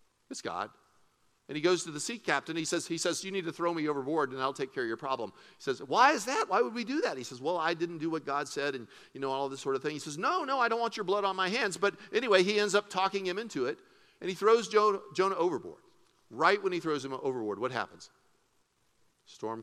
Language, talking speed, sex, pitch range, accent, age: English, 270 wpm, male, 135-210 Hz, American, 50-69